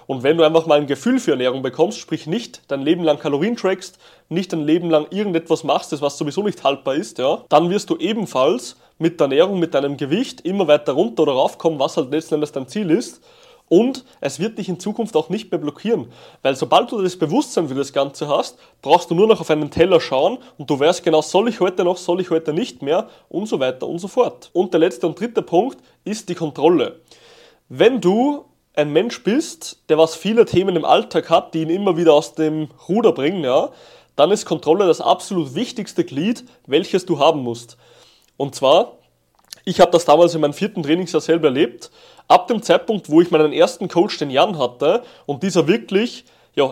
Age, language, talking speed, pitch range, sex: 30-49, German, 210 wpm, 150-195 Hz, male